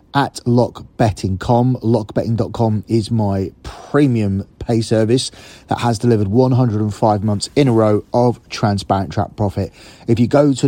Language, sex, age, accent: English, male, 30-49, British